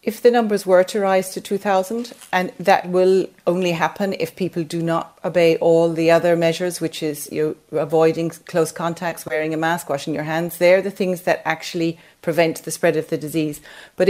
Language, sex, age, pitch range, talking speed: English, female, 40-59, 160-185 Hz, 190 wpm